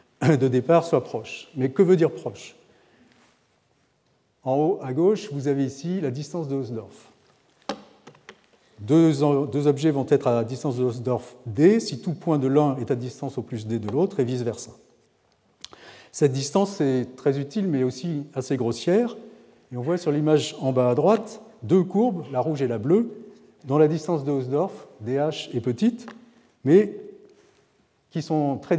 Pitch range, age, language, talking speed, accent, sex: 125-165 Hz, 40-59, French, 165 wpm, French, male